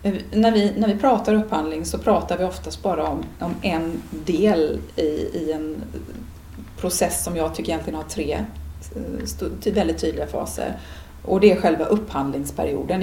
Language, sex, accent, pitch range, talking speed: Swedish, female, native, 150-205 Hz, 145 wpm